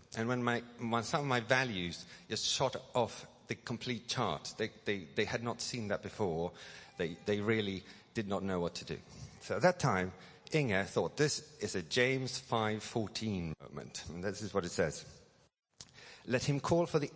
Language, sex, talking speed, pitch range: English, male, 190 wpm, 100-135 Hz